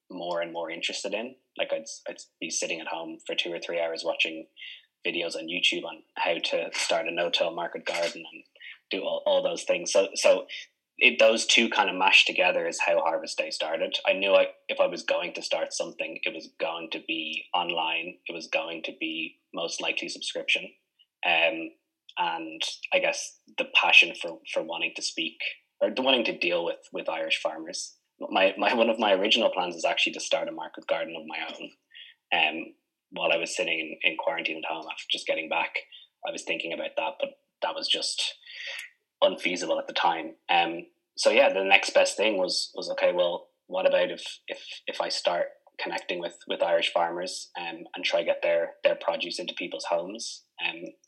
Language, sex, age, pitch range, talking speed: English, male, 20-39, 280-360 Hz, 205 wpm